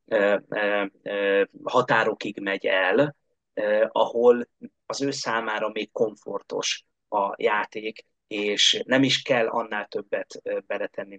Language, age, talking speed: Hungarian, 30-49, 95 wpm